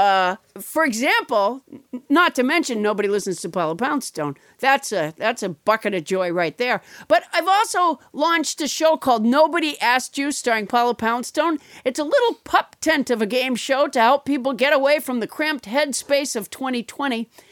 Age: 50-69